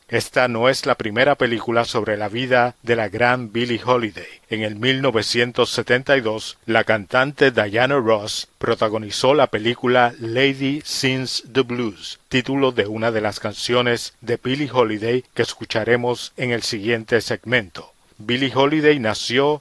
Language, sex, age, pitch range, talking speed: Spanish, male, 50-69, 115-130 Hz, 140 wpm